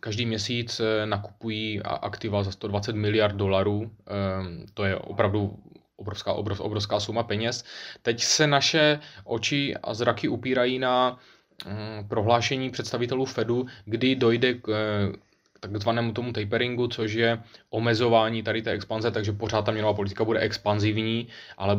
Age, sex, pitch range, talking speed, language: 20-39, male, 105-120 Hz, 125 wpm, Czech